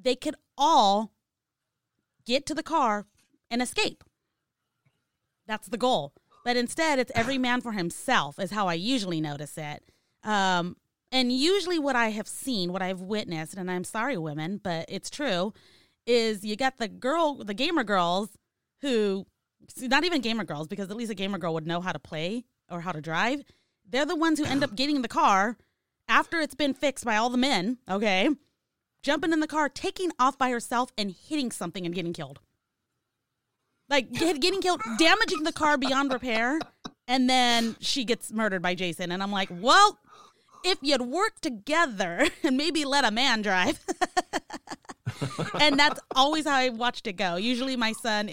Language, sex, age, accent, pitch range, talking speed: English, female, 30-49, American, 185-280 Hz, 180 wpm